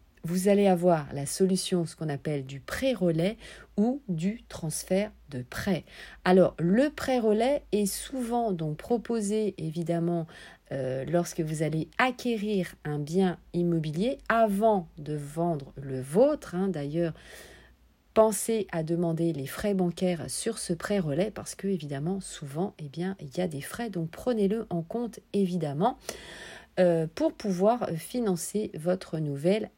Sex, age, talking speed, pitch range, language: female, 40-59, 145 wpm, 160-215 Hz, French